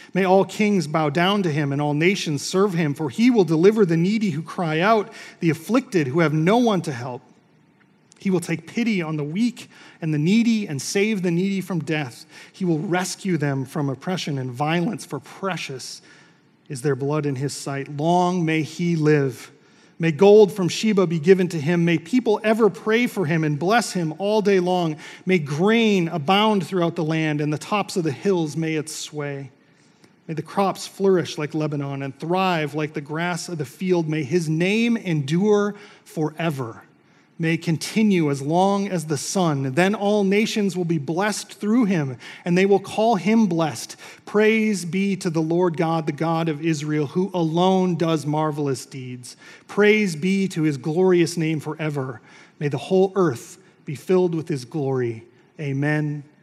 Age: 40-59